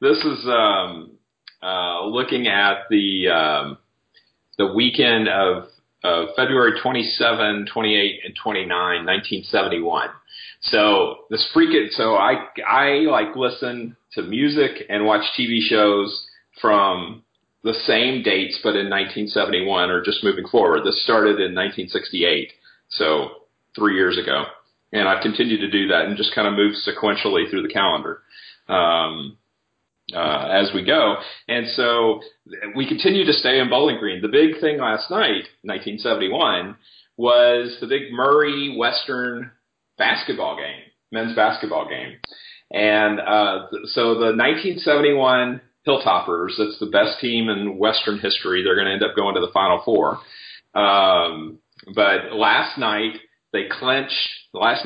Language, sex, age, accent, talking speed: English, male, 40-59, American, 140 wpm